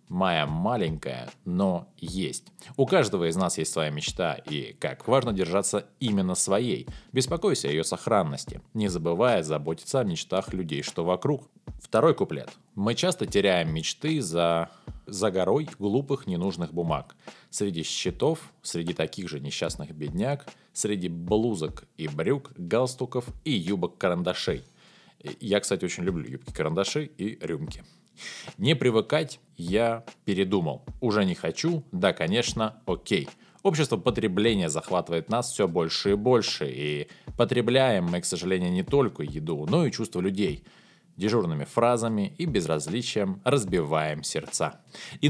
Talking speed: 135 wpm